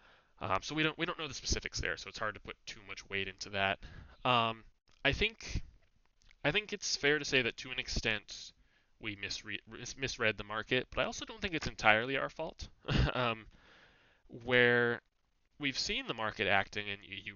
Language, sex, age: English, male, 20-39